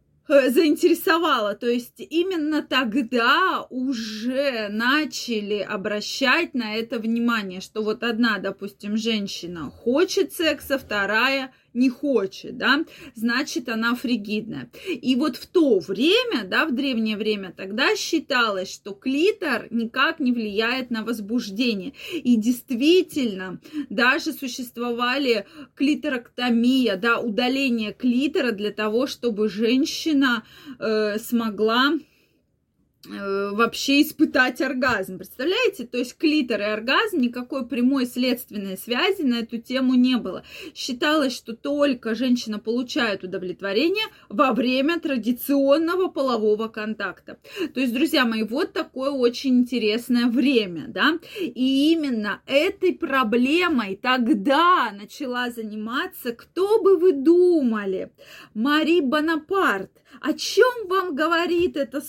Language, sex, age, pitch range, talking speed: Russian, female, 20-39, 230-300 Hz, 110 wpm